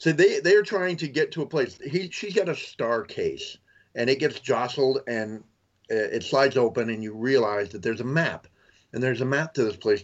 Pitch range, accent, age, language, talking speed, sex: 115-160 Hz, American, 40-59, English, 220 wpm, male